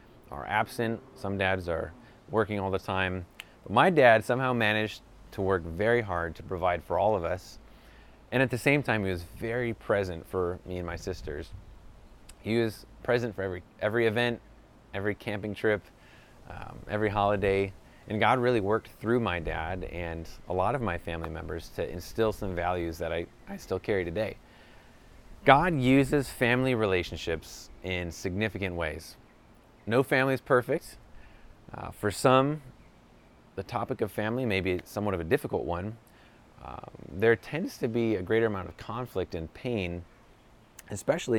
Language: English